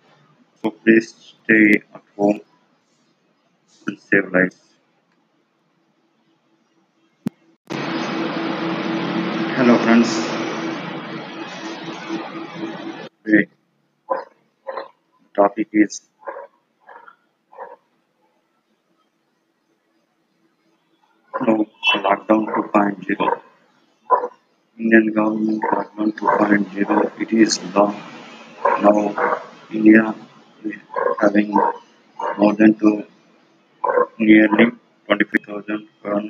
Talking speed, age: 60 wpm, 60-79